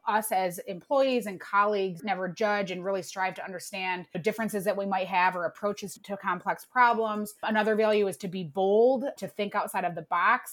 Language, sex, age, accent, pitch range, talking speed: English, female, 20-39, American, 180-215 Hz, 200 wpm